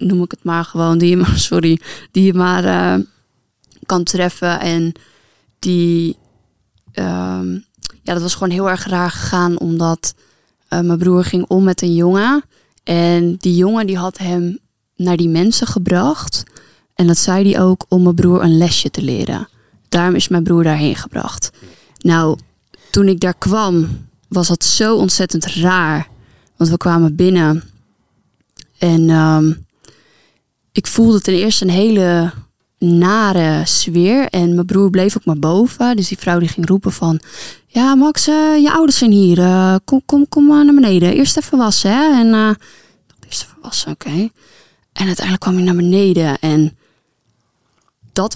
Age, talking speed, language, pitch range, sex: 20-39, 165 wpm, Dutch, 165-195 Hz, female